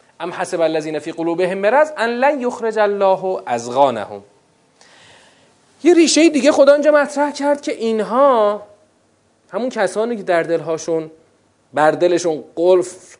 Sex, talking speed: male, 130 wpm